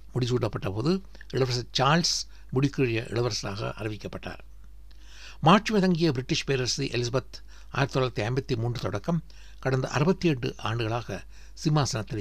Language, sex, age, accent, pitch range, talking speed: Tamil, male, 60-79, native, 100-145 Hz, 95 wpm